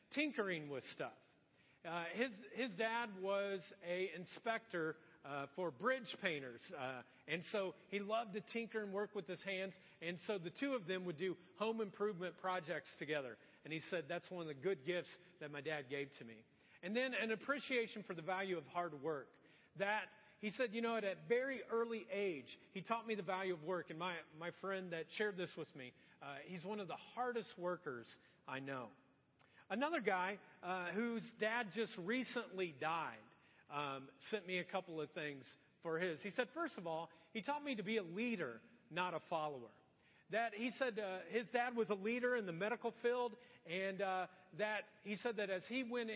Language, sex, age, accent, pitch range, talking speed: English, male, 40-59, American, 165-225 Hz, 200 wpm